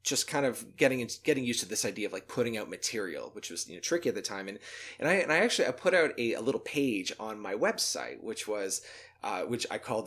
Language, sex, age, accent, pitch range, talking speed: English, male, 30-49, American, 115-165 Hz, 270 wpm